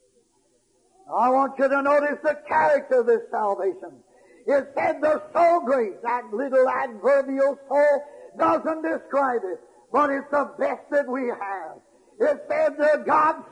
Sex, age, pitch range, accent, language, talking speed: male, 60-79, 275-335 Hz, American, English, 145 wpm